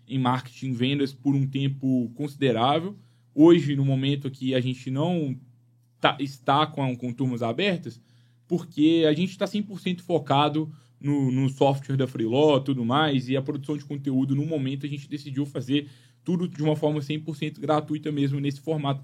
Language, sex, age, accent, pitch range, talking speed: Portuguese, male, 10-29, Brazilian, 125-155 Hz, 170 wpm